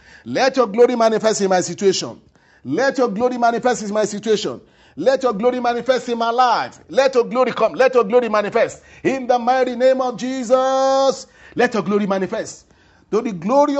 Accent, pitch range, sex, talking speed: Nigerian, 200-255 Hz, male, 185 wpm